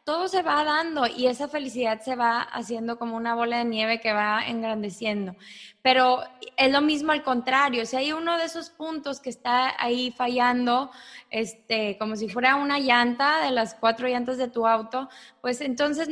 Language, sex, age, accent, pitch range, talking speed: English, female, 20-39, Mexican, 225-265 Hz, 180 wpm